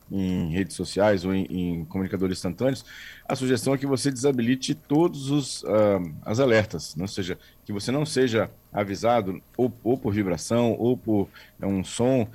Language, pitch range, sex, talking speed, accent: Portuguese, 100-125 Hz, male, 175 wpm, Brazilian